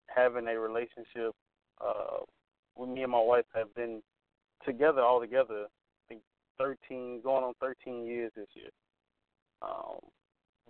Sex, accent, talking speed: male, American, 135 wpm